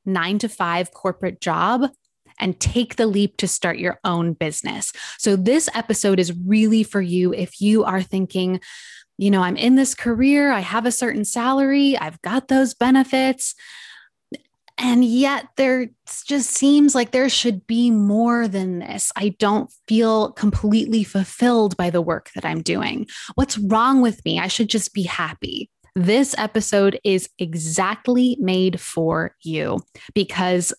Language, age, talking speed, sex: English, 20-39, 155 wpm, female